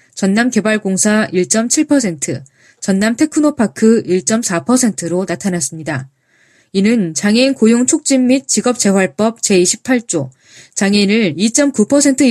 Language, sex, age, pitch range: Korean, female, 20-39, 180-250 Hz